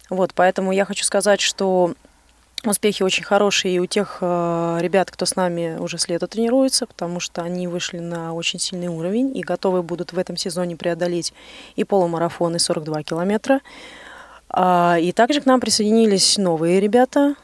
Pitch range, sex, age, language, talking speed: 175-225 Hz, female, 20-39, Russian, 160 wpm